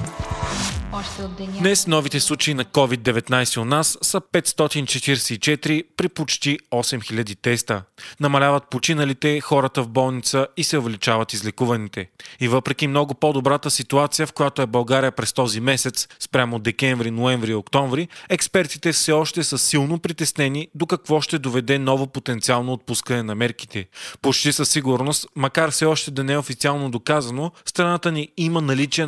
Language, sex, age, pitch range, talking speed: Bulgarian, male, 30-49, 125-160 Hz, 140 wpm